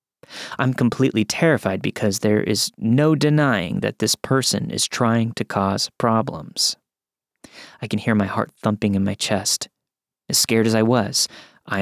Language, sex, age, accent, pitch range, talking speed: English, male, 30-49, American, 110-140 Hz, 155 wpm